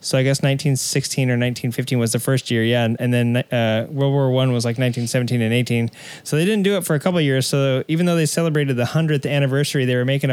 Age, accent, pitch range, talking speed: 20-39, American, 130-155 Hz, 255 wpm